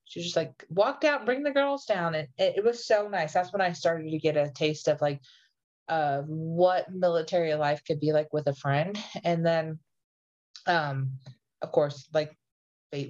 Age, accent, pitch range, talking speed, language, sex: 20-39, American, 155-195 Hz, 195 wpm, English, female